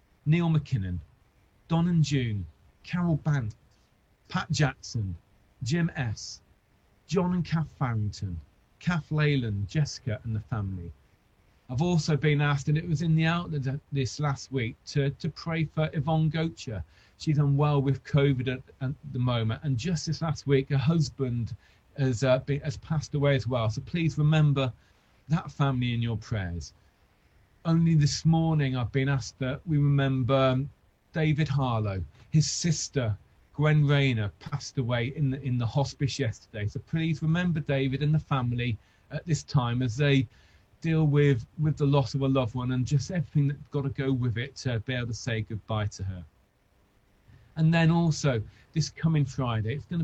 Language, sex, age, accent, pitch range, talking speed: English, male, 40-59, British, 115-150 Hz, 170 wpm